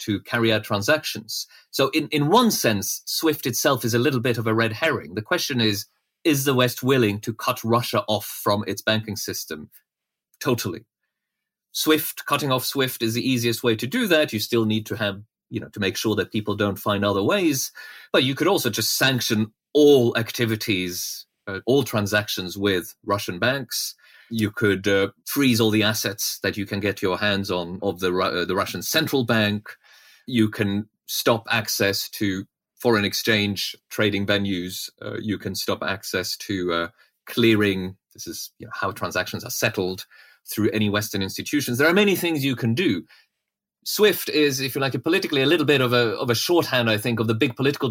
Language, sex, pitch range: English, male, 105-130 Hz